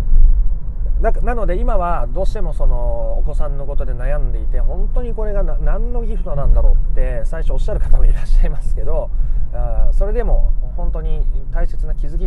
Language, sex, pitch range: Japanese, male, 115-170 Hz